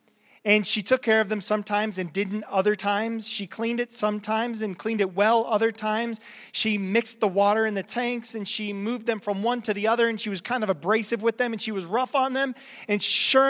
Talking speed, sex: 235 wpm, male